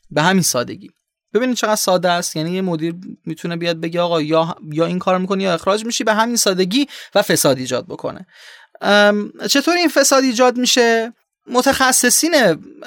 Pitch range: 160-215 Hz